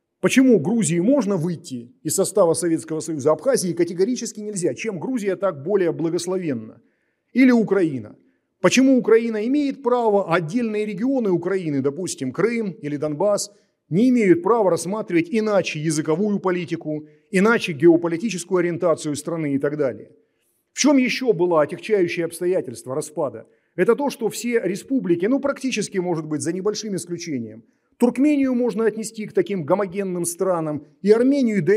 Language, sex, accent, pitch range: Russian, male, native, 160-210 Hz